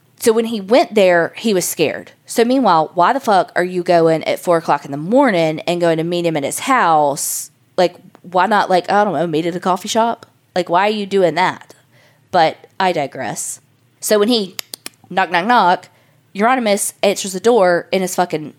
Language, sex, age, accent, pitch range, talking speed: English, female, 20-39, American, 150-195 Hz, 205 wpm